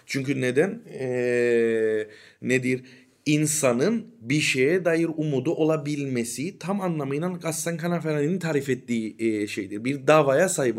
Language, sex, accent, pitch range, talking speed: Turkish, male, native, 145-190 Hz, 115 wpm